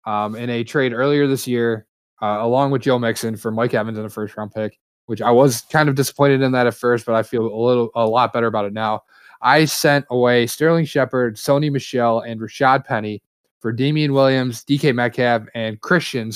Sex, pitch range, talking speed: male, 115-140 Hz, 215 wpm